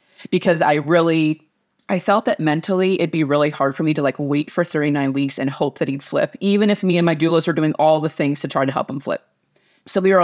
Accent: American